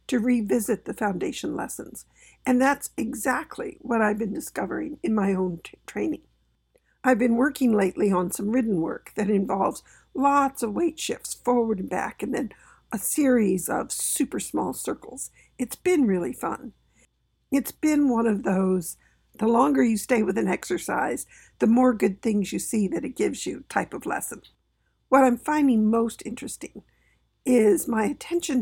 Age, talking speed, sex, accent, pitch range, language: 60-79, 165 wpm, female, American, 215-275 Hz, English